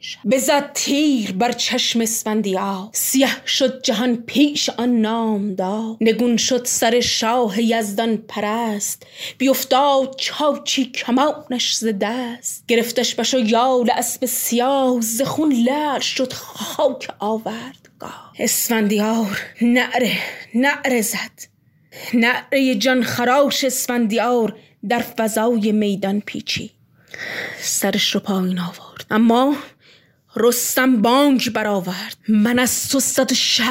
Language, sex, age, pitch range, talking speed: Persian, female, 20-39, 220-275 Hz, 100 wpm